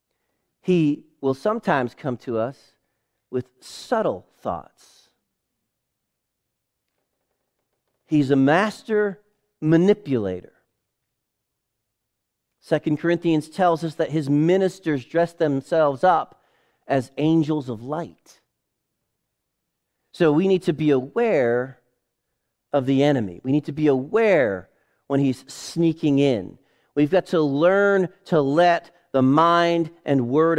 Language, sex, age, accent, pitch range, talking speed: English, male, 40-59, American, 120-165 Hz, 110 wpm